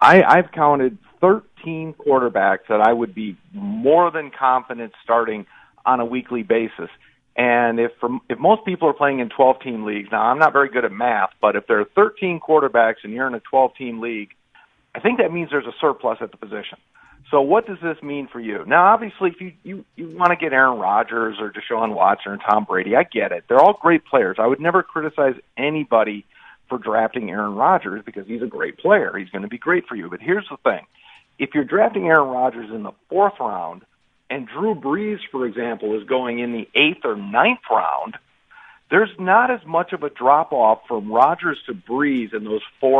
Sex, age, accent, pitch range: male, 50-69, American, 115-165 Hz